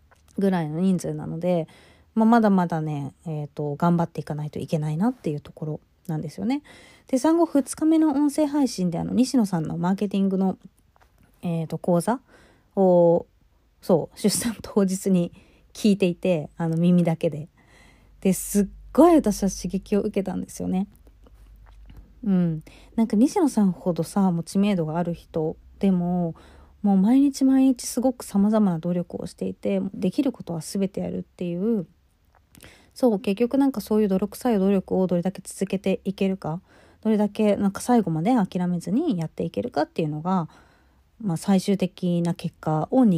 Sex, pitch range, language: female, 165-220 Hz, Japanese